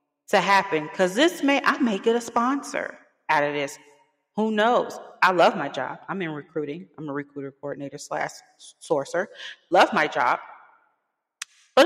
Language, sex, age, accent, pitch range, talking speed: English, female, 30-49, American, 155-200 Hz, 160 wpm